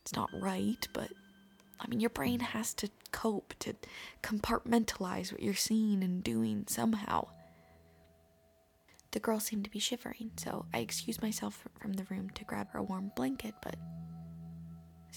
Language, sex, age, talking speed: English, female, 20-39, 160 wpm